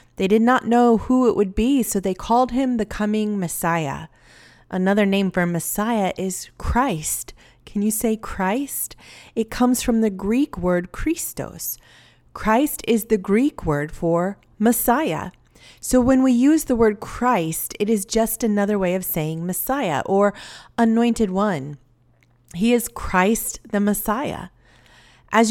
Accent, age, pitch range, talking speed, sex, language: American, 30-49, 180-235 Hz, 150 wpm, female, English